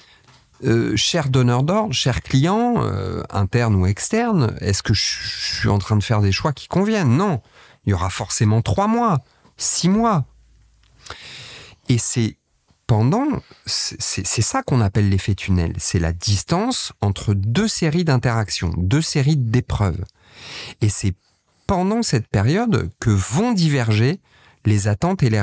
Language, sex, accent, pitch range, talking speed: French, male, French, 100-150 Hz, 155 wpm